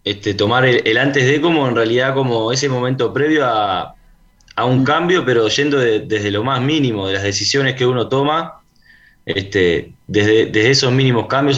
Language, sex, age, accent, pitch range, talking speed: Spanish, male, 20-39, Argentinian, 105-135 Hz, 185 wpm